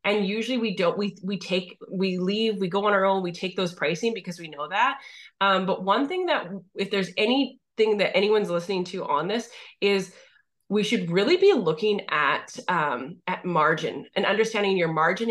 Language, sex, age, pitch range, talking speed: English, female, 20-39, 185-220 Hz, 195 wpm